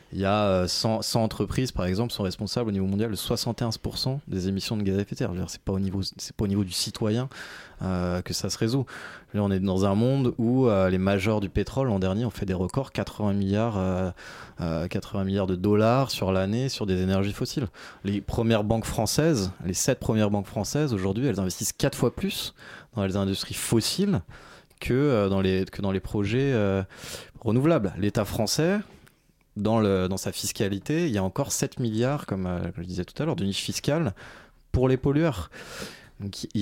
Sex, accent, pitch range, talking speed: male, French, 100-125 Hz, 210 wpm